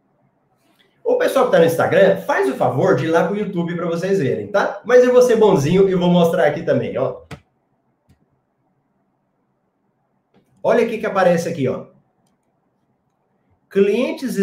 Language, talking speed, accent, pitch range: Portuguese, 155 wpm, Brazilian, 155-215 Hz